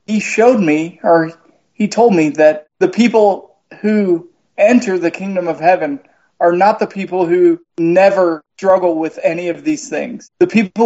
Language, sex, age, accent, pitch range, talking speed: English, male, 20-39, American, 165-195 Hz, 165 wpm